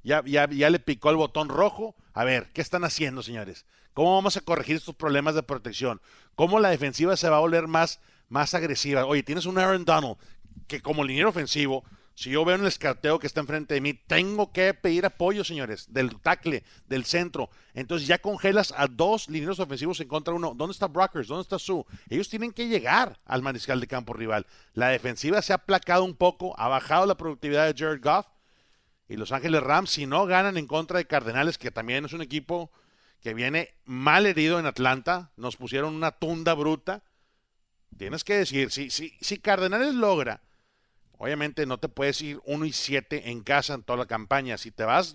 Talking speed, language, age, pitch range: 205 wpm, Spanish, 40-59, 135-175 Hz